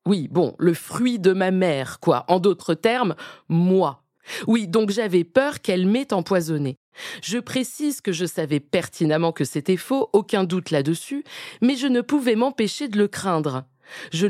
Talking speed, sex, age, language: 170 wpm, female, 20-39, French